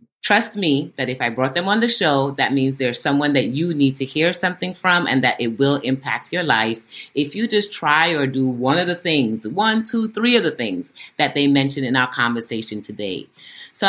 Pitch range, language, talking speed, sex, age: 130-185 Hz, English, 225 wpm, female, 30-49